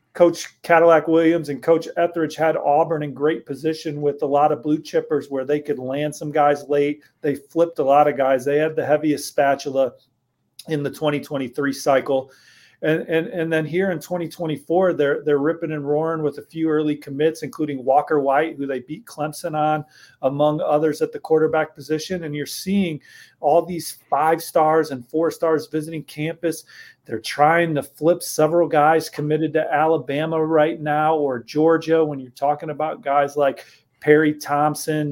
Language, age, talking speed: English, 40-59, 175 wpm